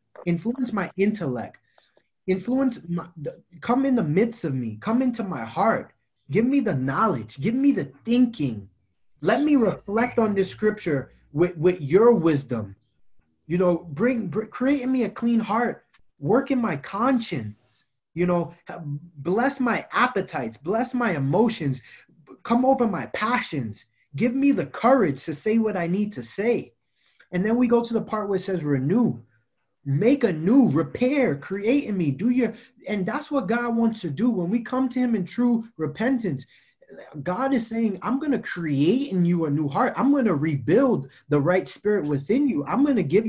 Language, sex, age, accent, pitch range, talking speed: English, male, 20-39, American, 160-235 Hz, 180 wpm